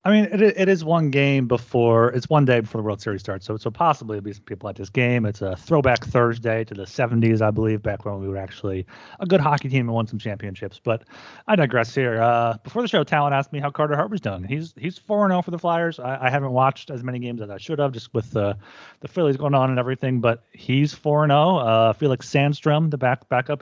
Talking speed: 250 wpm